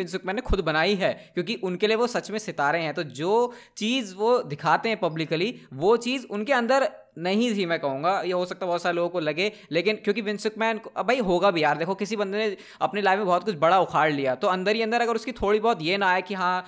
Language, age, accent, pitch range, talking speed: Hindi, 20-39, native, 155-210 Hz, 240 wpm